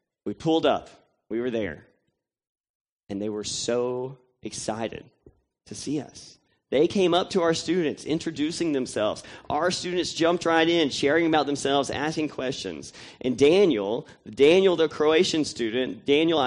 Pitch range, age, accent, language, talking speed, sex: 120-155 Hz, 30-49, American, English, 140 wpm, male